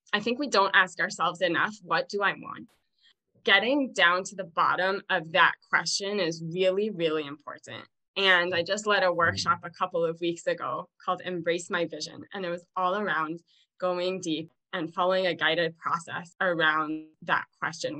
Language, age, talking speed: English, 20-39, 175 wpm